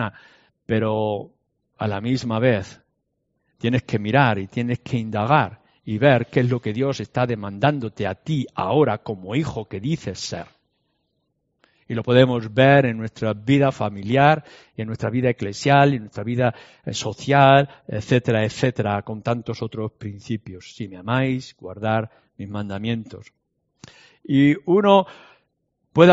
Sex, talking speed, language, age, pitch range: male, 140 wpm, Spanish, 50-69, 110-140 Hz